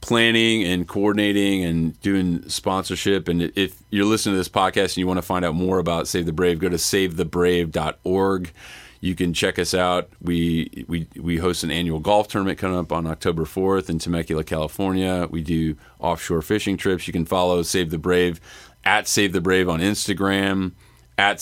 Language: English